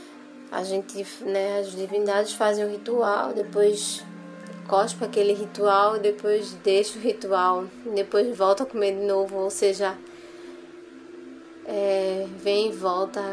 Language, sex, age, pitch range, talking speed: Portuguese, female, 20-39, 195-230 Hz, 130 wpm